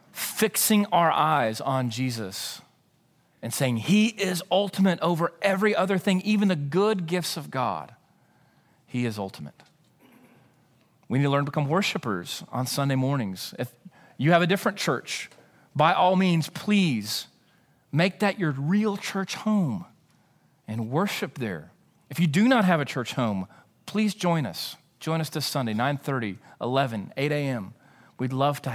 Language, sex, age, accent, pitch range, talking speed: English, male, 40-59, American, 120-175 Hz, 155 wpm